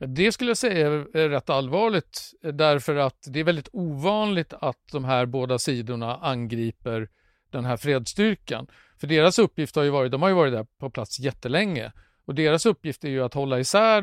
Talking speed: 190 wpm